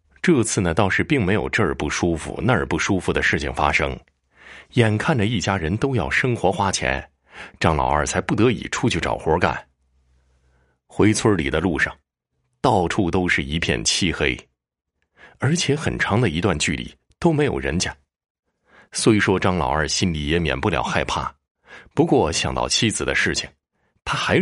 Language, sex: Chinese, male